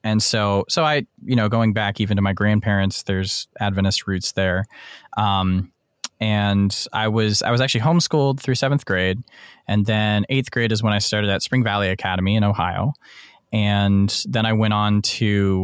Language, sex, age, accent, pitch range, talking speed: English, male, 20-39, American, 100-115 Hz, 180 wpm